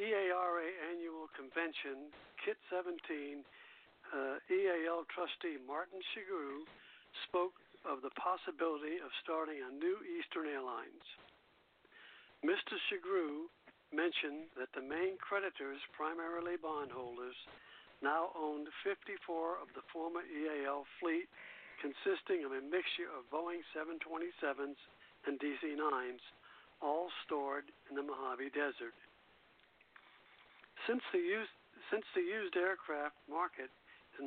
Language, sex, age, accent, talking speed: English, male, 60-79, American, 105 wpm